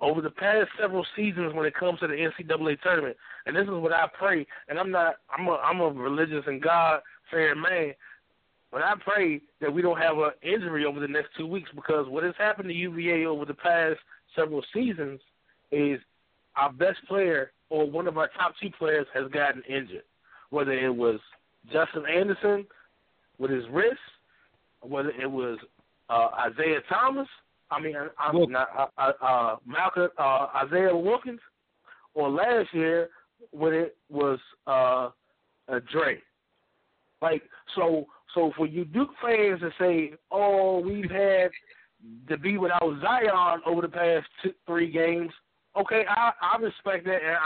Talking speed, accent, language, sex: 165 wpm, American, English, male